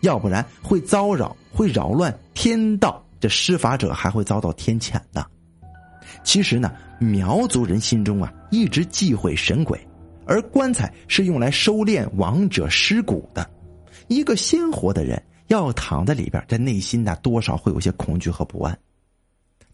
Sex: male